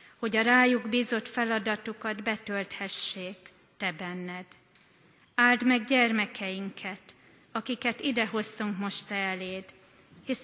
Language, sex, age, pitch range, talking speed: Hungarian, female, 30-49, 195-230 Hz, 90 wpm